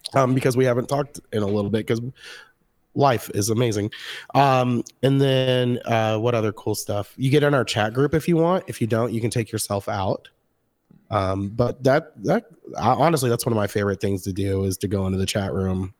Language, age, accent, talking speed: English, 30-49, American, 220 wpm